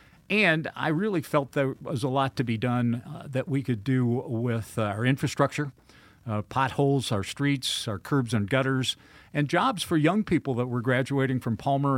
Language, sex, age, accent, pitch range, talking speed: English, male, 50-69, American, 115-145 Hz, 190 wpm